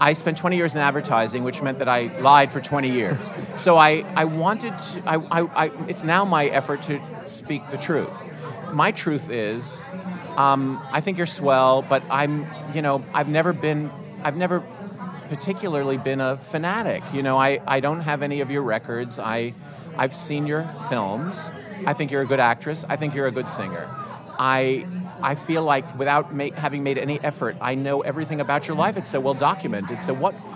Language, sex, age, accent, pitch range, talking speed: English, male, 50-69, American, 135-165 Hz, 195 wpm